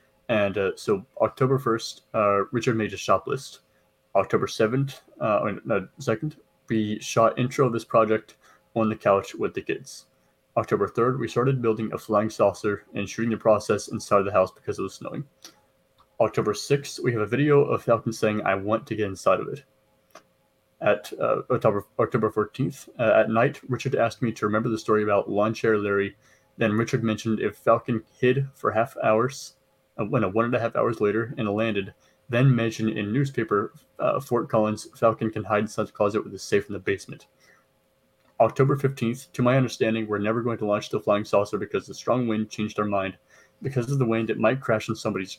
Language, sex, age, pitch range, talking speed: English, male, 20-39, 105-125 Hz, 195 wpm